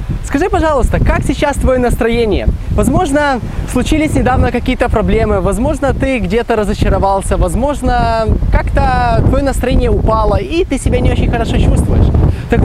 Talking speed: 135 wpm